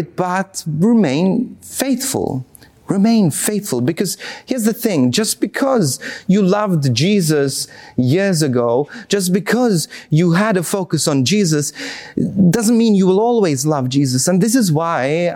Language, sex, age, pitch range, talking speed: English, male, 30-49, 135-195 Hz, 135 wpm